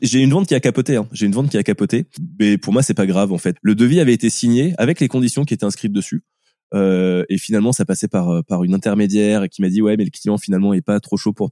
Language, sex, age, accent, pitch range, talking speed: French, male, 20-39, French, 95-115 Hz, 285 wpm